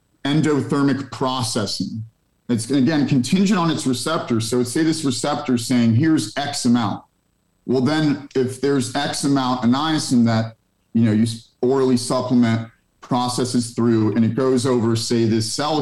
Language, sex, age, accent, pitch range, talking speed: English, male, 40-59, American, 115-140 Hz, 145 wpm